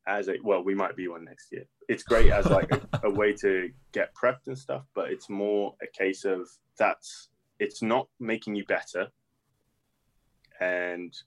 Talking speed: 180 wpm